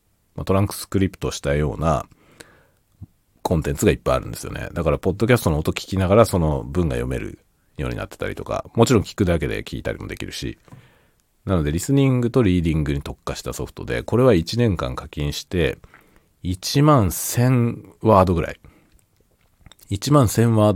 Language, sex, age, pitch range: Japanese, male, 40-59, 80-125 Hz